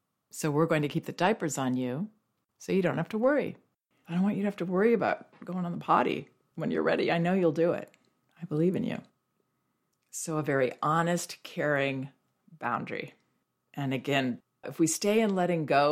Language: English